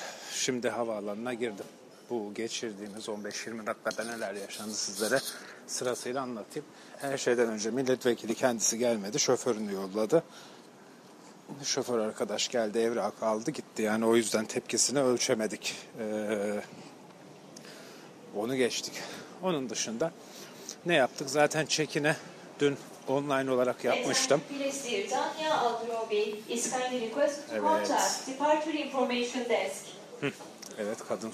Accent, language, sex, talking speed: native, Turkish, male, 90 wpm